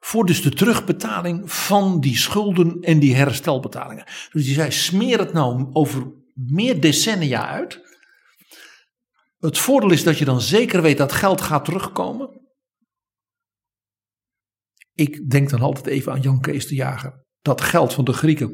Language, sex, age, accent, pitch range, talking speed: Dutch, male, 60-79, Dutch, 140-195 Hz, 150 wpm